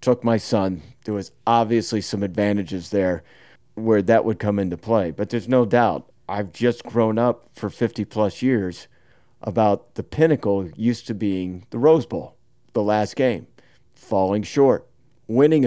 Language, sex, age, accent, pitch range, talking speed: English, male, 40-59, American, 100-120 Hz, 155 wpm